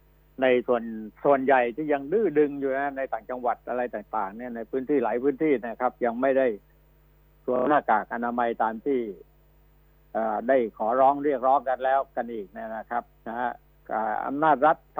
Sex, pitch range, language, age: male, 125-150 Hz, Thai, 60-79